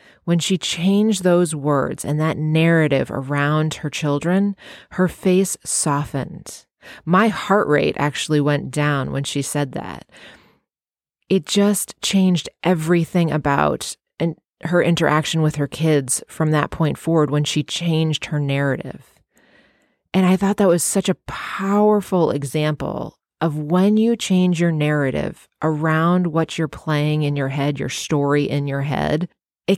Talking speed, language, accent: 145 wpm, English, American